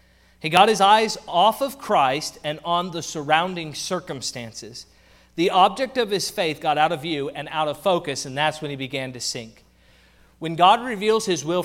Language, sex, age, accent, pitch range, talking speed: English, male, 30-49, American, 130-180 Hz, 190 wpm